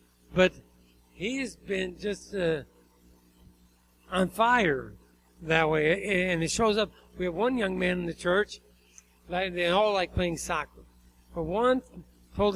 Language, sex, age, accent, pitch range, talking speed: English, male, 60-79, American, 150-205 Hz, 150 wpm